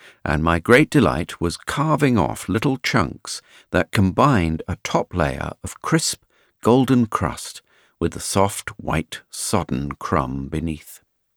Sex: male